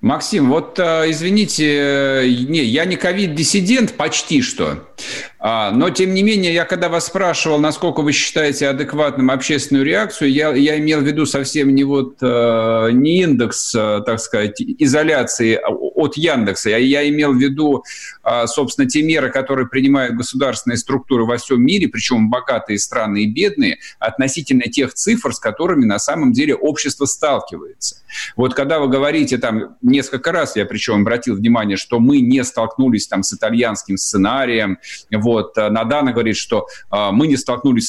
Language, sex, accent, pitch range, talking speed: Russian, male, native, 125-180 Hz, 145 wpm